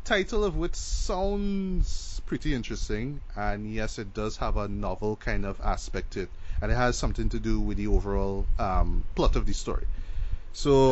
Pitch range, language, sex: 95-125 Hz, English, male